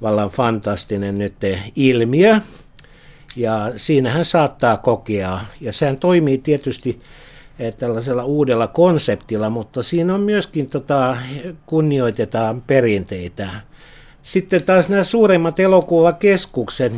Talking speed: 95 wpm